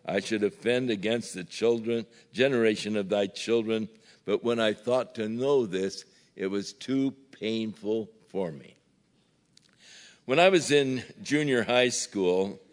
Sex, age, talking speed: male, 60-79, 140 wpm